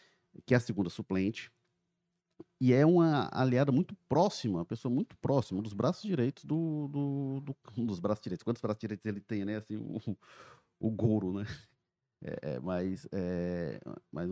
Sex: male